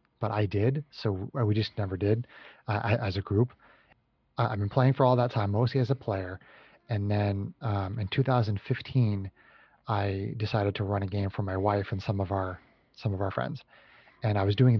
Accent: American